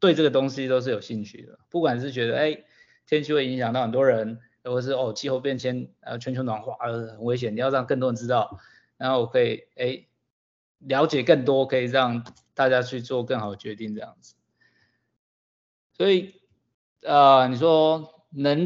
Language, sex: Chinese, male